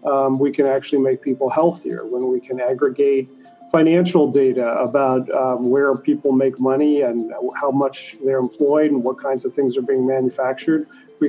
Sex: male